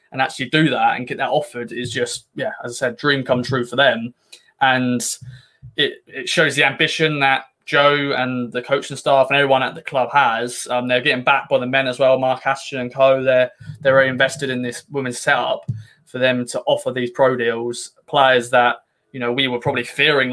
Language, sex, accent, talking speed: English, male, British, 215 wpm